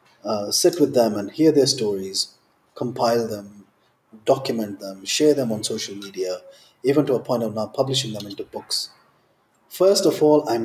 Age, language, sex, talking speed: 30-49, Punjabi, male, 175 wpm